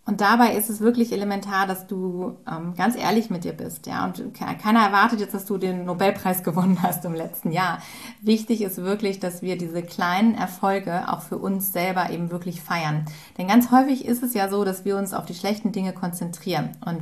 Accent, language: German, German